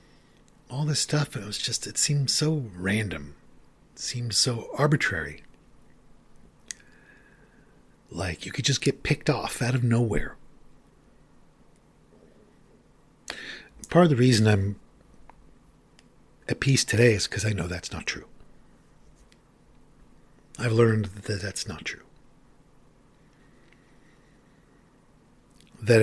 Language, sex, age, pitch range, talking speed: English, male, 50-69, 105-130 Hz, 110 wpm